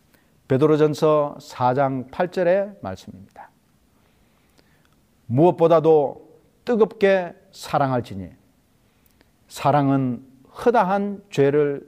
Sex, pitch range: male, 160-240 Hz